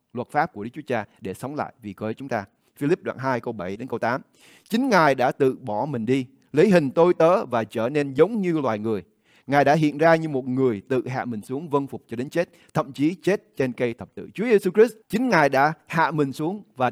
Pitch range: 120-165 Hz